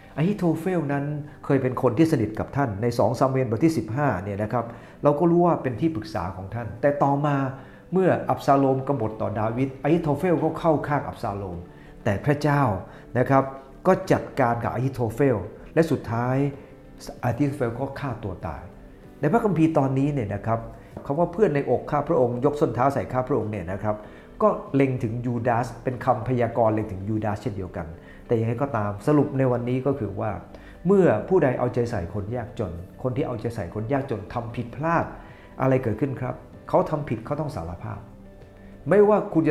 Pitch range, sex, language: 110-145 Hz, male, English